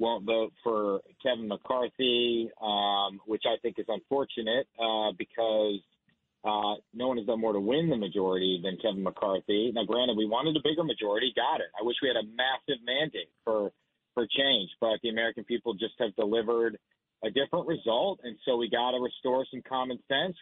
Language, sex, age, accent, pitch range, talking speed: English, male, 40-59, American, 115-140 Hz, 190 wpm